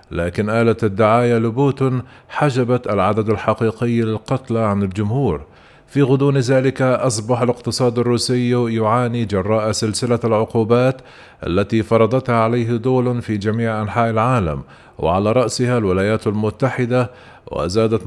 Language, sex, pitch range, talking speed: Arabic, male, 110-125 Hz, 110 wpm